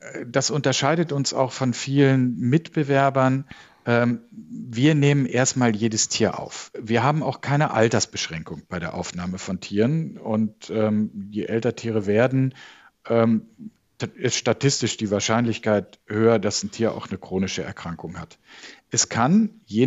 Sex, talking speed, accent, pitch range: male, 135 wpm, German, 110-135 Hz